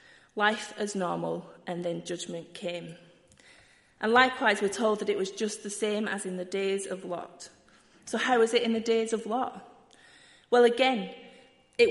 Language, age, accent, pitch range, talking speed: English, 30-49, British, 180-225 Hz, 175 wpm